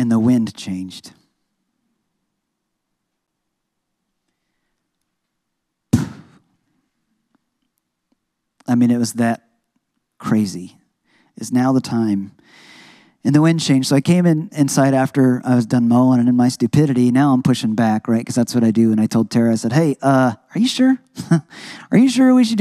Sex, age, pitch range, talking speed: male, 40-59, 120-160 Hz, 155 wpm